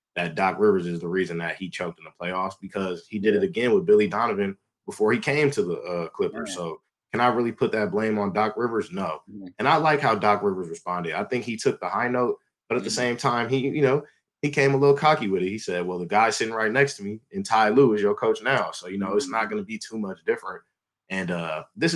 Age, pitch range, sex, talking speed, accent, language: 20-39, 95-130 Hz, male, 270 wpm, American, English